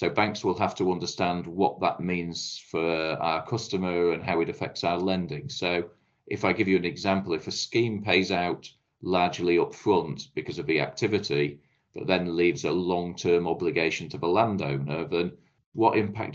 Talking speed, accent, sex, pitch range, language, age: 180 wpm, British, male, 85-100 Hz, English, 40-59